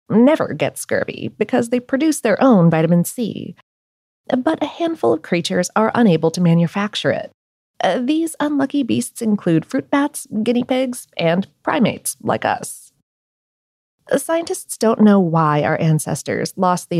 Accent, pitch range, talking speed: American, 170-255 Hz, 140 wpm